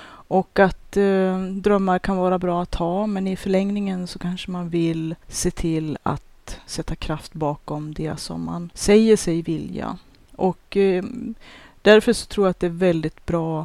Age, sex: 30-49, female